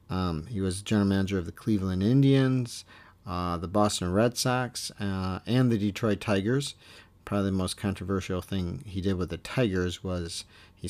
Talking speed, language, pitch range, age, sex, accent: 170 wpm, English, 95-115 Hz, 50-69, male, American